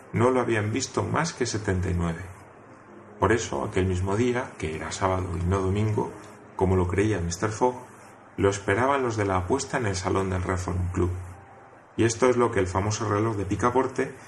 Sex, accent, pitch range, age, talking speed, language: male, Spanish, 90-115 Hz, 30-49, 190 wpm, Spanish